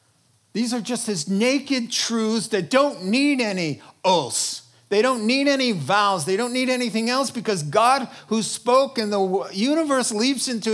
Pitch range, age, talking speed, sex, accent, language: 150-225 Hz, 50-69, 170 wpm, male, American, English